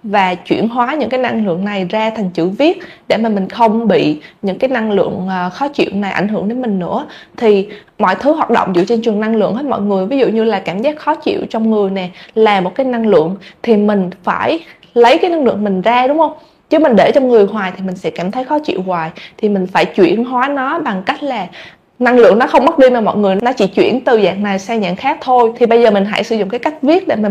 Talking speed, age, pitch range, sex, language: 270 wpm, 20-39, 200-270 Hz, female, Vietnamese